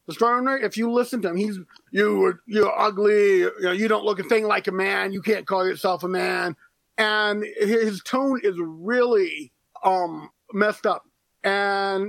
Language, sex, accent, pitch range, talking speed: English, male, American, 195-250 Hz, 170 wpm